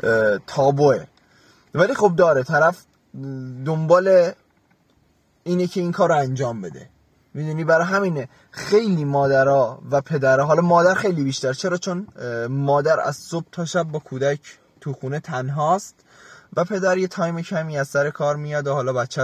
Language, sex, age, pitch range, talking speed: Persian, male, 20-39, 130-180 Hz, 150 wpm